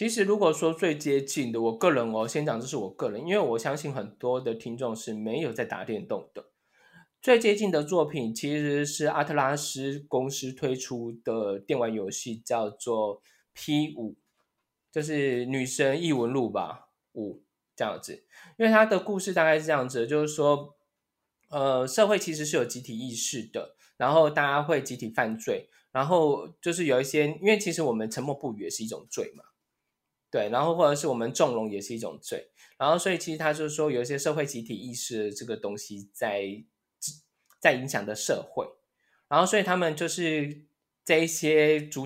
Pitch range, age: 120-165 Hz, 20-39